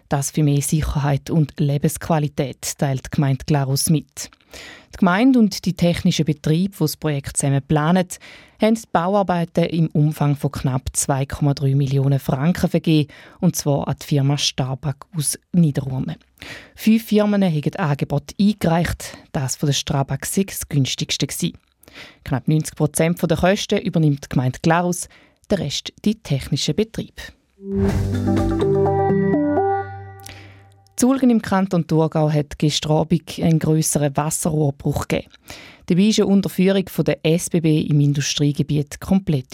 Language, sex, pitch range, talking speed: German, female, 140-175 Hz, 135 wpm